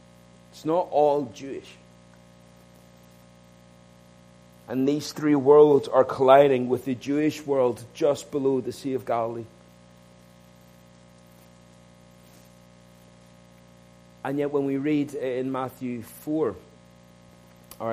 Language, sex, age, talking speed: English, male, 40-59, 95 wpm